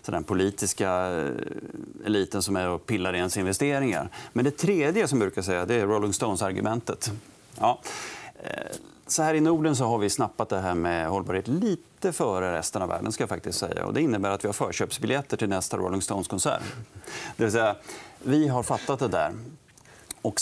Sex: male